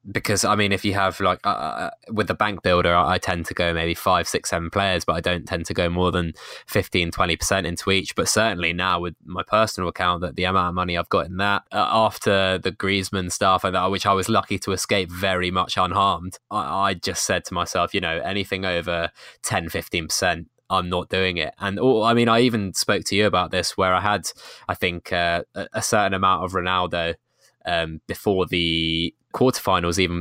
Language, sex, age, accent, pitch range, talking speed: English, male, 20-39, British, 90-105 Hz, 215 wpm